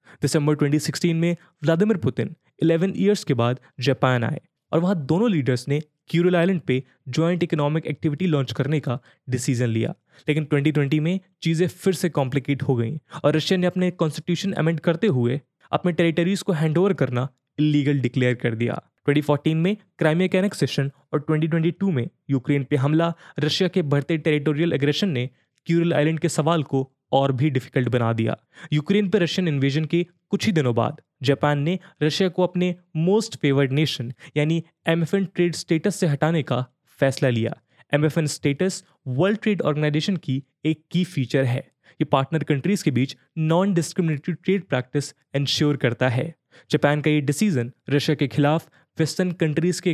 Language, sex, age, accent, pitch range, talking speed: English, male, 20-39, Indian, 140-175 Hz, 125 wpm